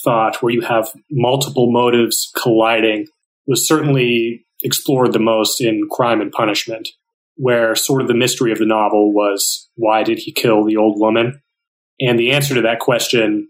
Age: 30-49